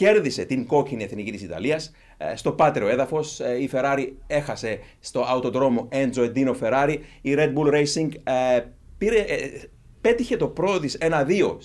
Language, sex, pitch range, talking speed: Greek, male, 125-160 Hz, 135 wpm